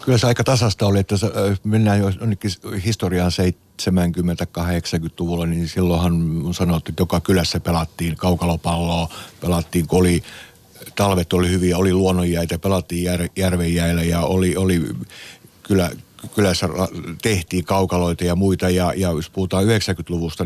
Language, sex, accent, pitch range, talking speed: Finnish, male, native, 85-95 Hz, 125 wpm